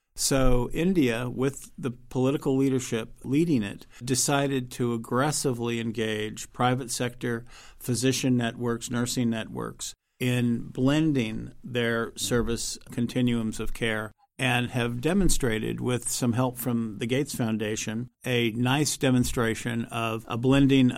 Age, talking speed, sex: 50-69, 115 wpm, male